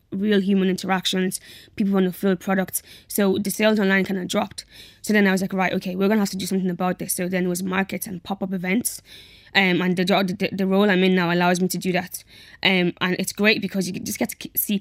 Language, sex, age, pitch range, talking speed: English, female, 10-29, 190-230 Hz, 255 wpm